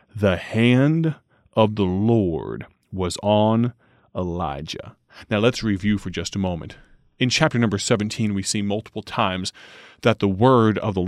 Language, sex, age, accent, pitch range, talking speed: English, male, 30-49, American, 105-140 Hz, 150 wpm